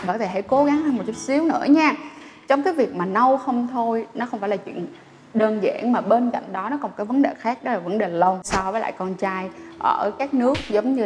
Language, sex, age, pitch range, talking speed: Vietnamese, female, 20-39, 205-275 Hz, 270 wpm